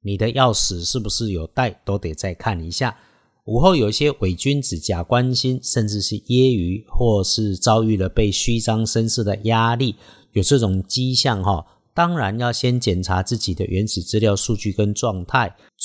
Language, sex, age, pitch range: Chinese, male, 50-69, 95-125 Hz